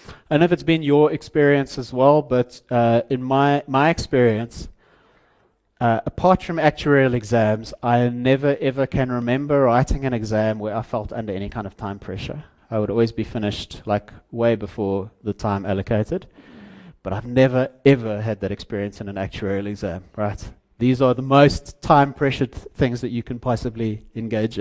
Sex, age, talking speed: male, 30-49, 180 wpm